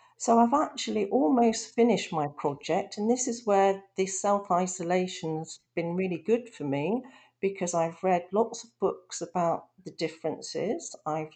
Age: 50-69